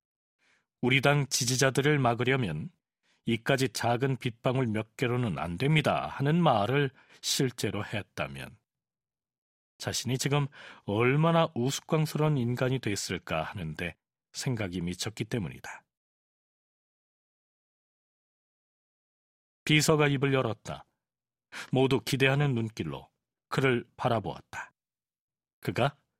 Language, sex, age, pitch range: Korean, male, 40-59, 125-165 Hz